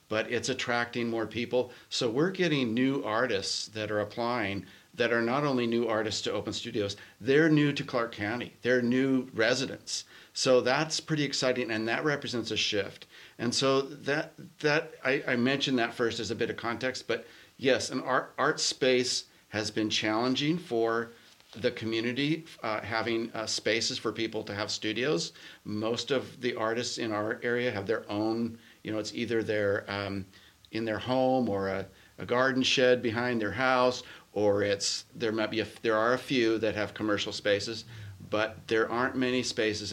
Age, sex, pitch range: 40-59, male, 105-125 Hz